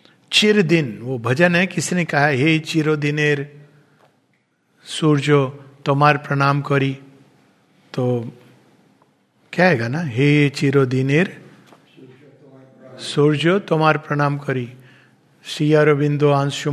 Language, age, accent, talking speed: Hindi, 50-69, native, 100 wpm